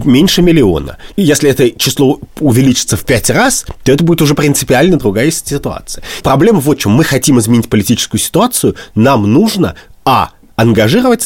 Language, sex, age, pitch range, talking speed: Russian, male, 30-49, 100-145 Hz, 155 wpm